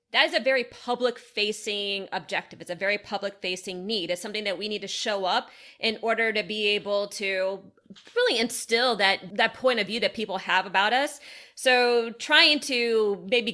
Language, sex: English, female